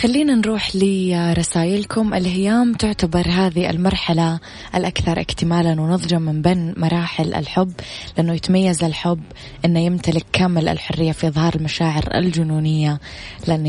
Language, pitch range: Arabic, 155-175 Hz